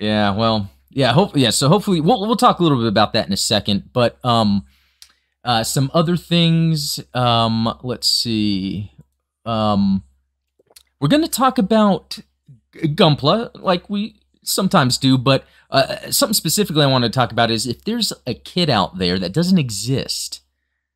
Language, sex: English, male